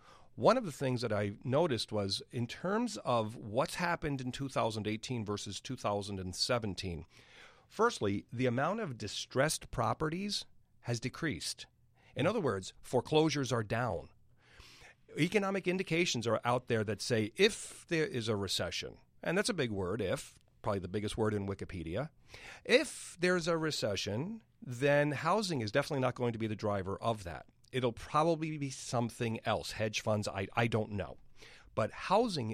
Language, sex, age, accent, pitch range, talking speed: English, male, 40-59, American, 105-140 Hz, 160 wpm